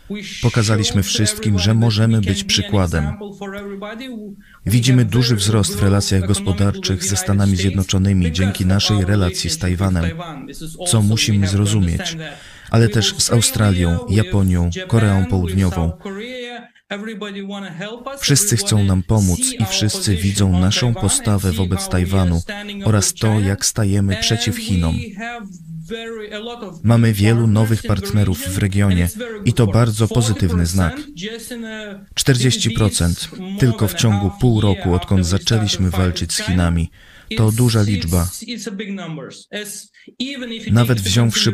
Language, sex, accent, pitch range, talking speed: Polish, male, native, 95-160 Hz, 105 wpm